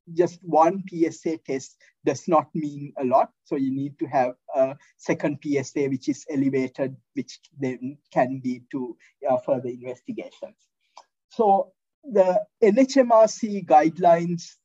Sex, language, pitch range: male, English, 145-185 Hz